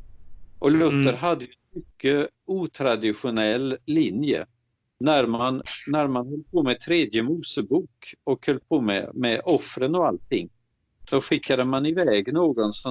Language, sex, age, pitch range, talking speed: Swedish, male, 50-69, 110-145 Hz, 140 wpm